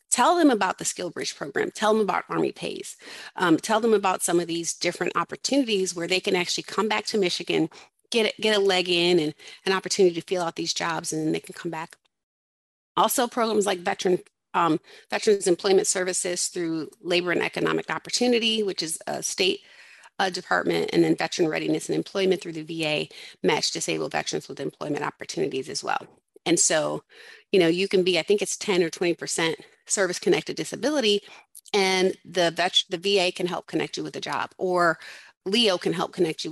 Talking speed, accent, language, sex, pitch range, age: 195 wpm, American, English, female, 170-215 Hz, 30-49